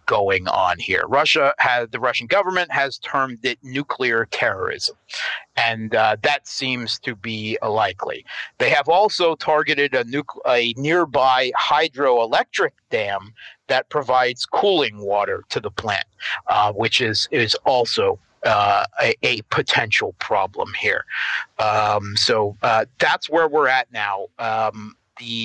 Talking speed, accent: 130 wpm, American